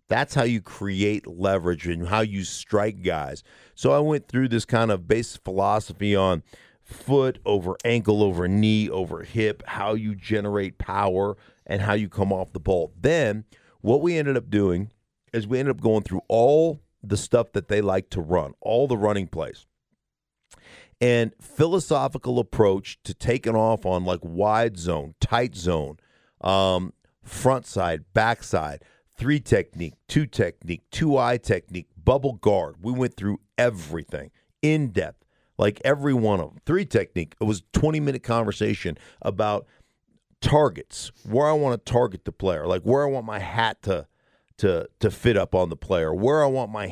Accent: American